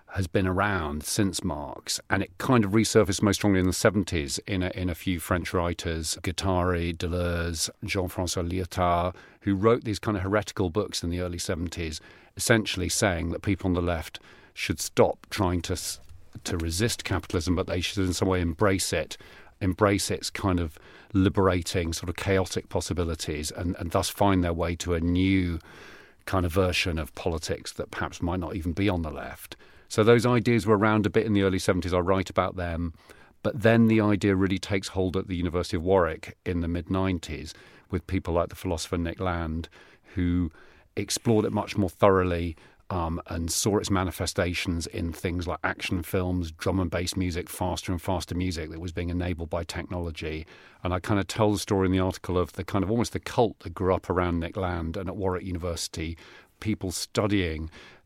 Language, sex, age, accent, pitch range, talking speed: English, male, 40-59, British, 85-100 Hz, 195 wpm